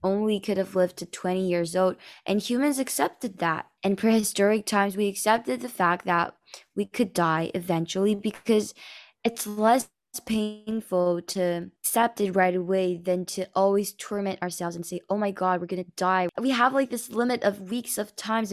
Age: 10-29